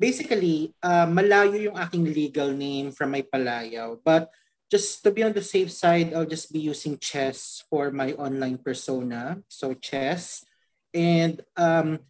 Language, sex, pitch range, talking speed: Filipino, male, 140-180 Hz, 155 wpm